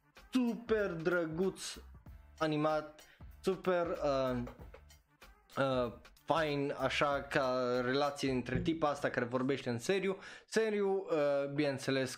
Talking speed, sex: 100 wpm, male